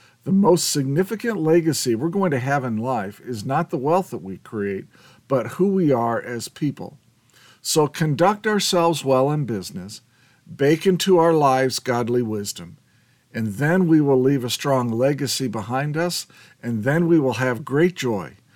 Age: 50-69